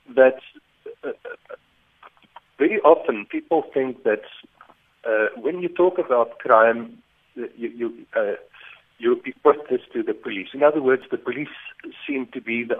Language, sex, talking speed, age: English, male, 140 wpm, 60-79